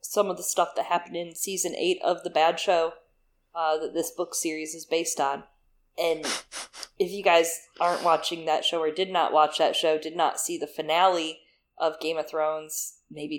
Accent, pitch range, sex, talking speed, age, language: American, 160-205 Hz, female, 200 wpm, 20-39, English